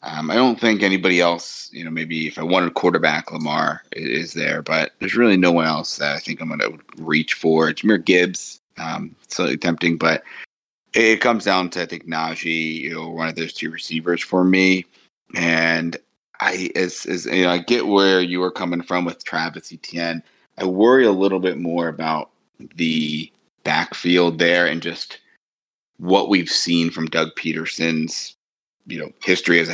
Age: 30-49